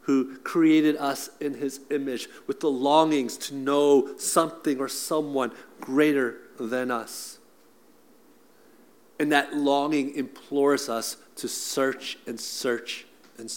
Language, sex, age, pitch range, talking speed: English, male, 50-69, 125-150 Hz, 120 wpm